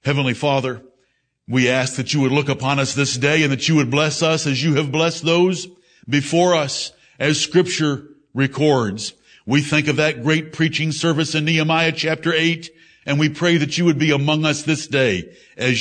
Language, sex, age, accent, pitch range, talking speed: English, male, 60-79, American, 135-165 Hz, 195 wpm